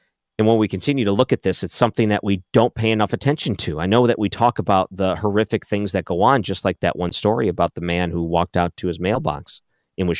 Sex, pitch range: male, 85-110 Hz